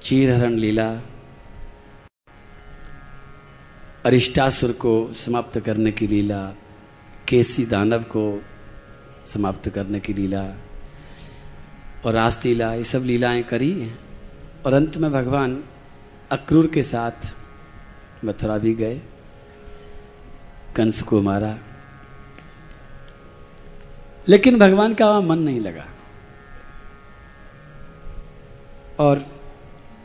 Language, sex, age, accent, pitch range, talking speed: Hindi, male, 50-69, native, 105-155 Hz, 80 wpm